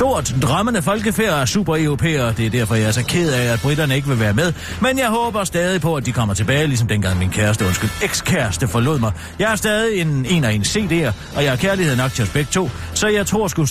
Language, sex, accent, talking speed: Danish, male, native, 250 wpm